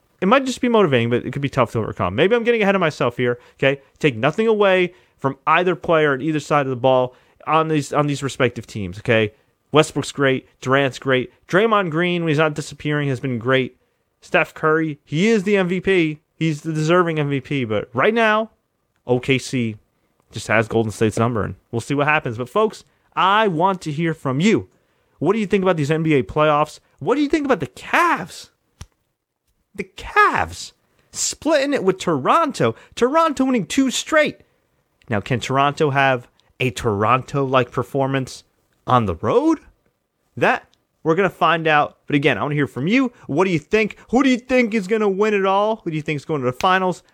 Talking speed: 200 wpm